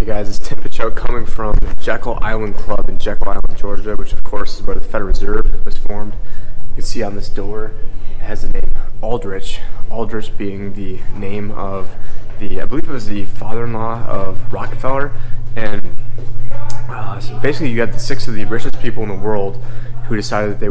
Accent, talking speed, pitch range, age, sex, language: American, 195 wpm, 100-115 Hz, 20-39, male, English